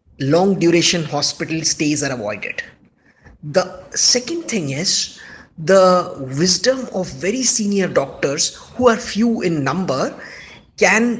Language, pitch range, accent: English, 160-215 Hz, Indian